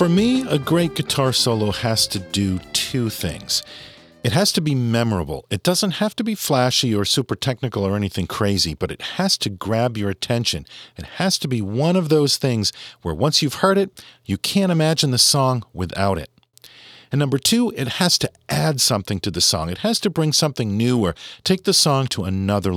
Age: 40-59